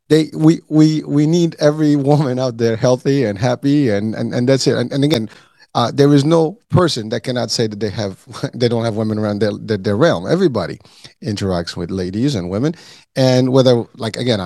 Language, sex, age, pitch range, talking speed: English, male, 30-49, 110-145 Hz, 210 wpm